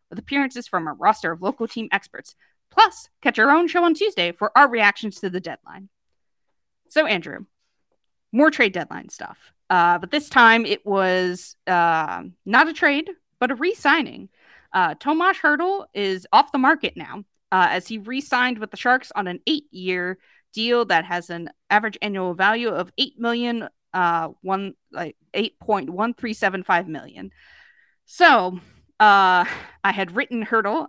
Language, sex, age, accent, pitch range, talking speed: English, female, 20-39, American, 180-260 Hz, 165 wpm